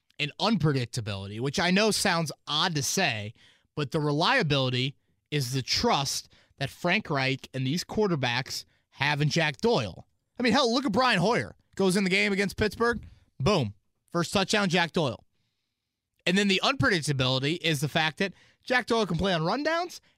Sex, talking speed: male, 170 wpm